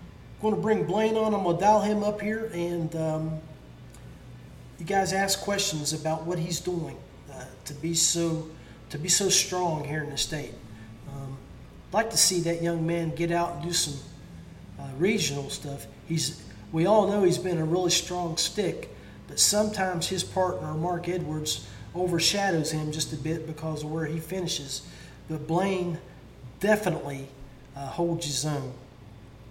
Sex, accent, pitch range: male, American, 145-185 Hz